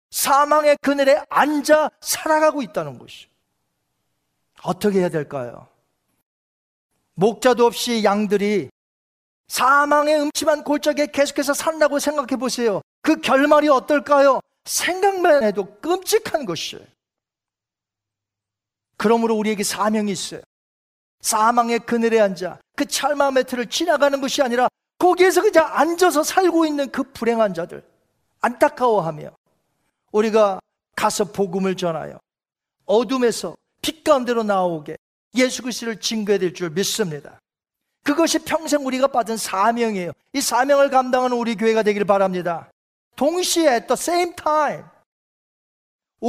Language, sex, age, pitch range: Korean, male, 40-59, 205-285 Hz